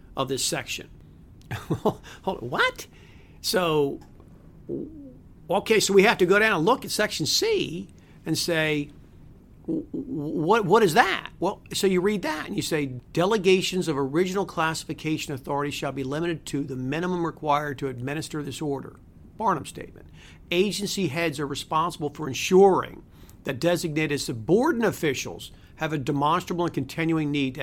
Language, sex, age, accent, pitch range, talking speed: English, male, 50-69, American, 145-190 Hz, 145 wpm